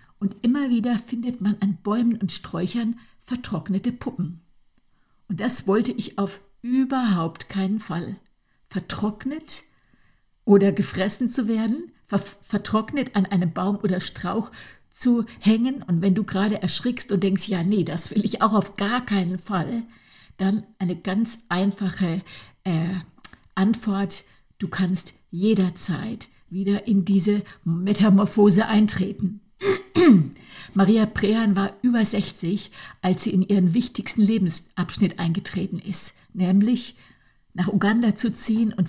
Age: 50-69